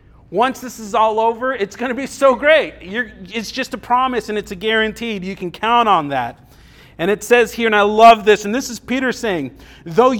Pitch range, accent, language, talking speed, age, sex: 170-225 Hz, American, English, 230 wpm, 30-49, male